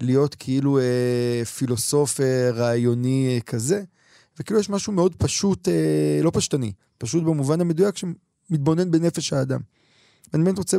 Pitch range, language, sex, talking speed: 125-155 Hz, Hebrew, male, 140 wpm